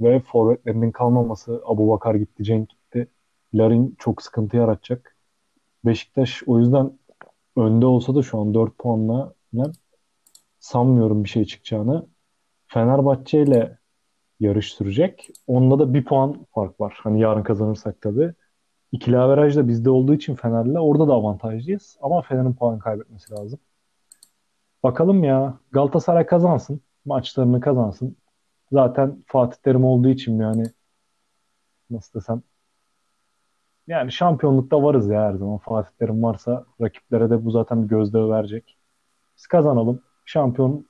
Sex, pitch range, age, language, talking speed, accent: male, 110-130 Hz, 30-49, Turkish, 125 wpm, native